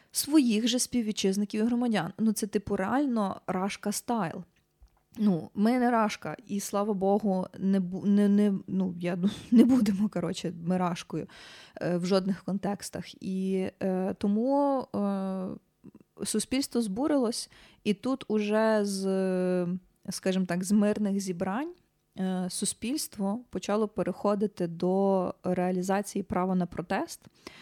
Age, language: 20-39, Ukrainian